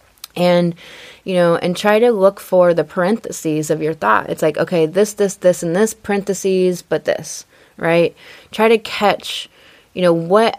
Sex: female